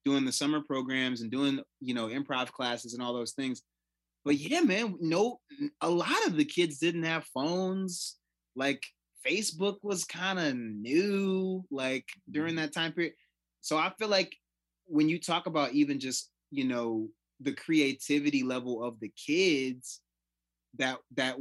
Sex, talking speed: male, 160 wpm